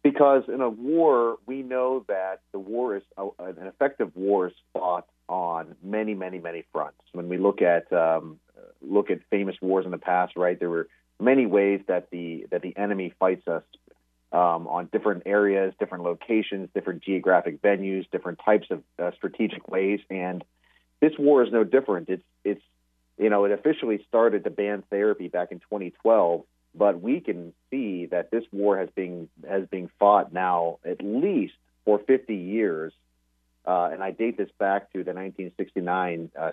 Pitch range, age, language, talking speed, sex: 85-105 Hz, 40-59, English, 170 wpm, male